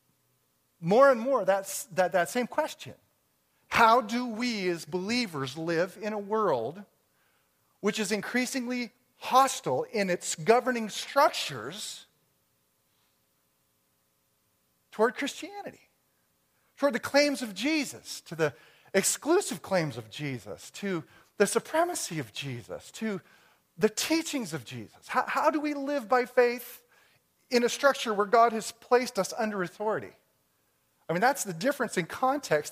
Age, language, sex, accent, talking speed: 40-59, English, male, American, 130 wpm